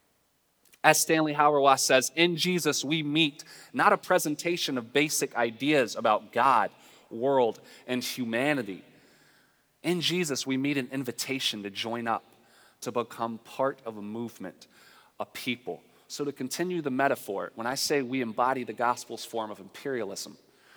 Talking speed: 145 wpm